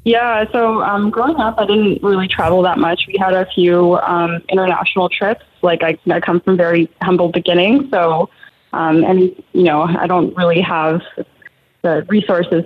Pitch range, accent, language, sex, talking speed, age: 170-200 Hz, American, English, female, 180 wpm, 20-39